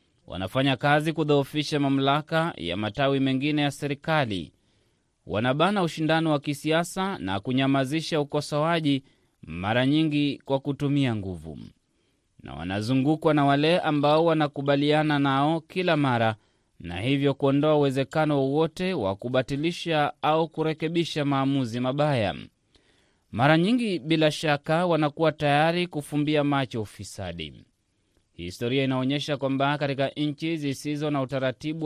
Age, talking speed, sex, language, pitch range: 30-49, 110 wpm, male, Swahili, 130-155 Hz